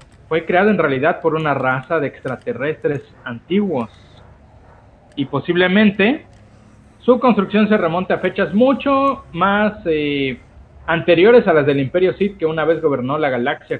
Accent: Mexican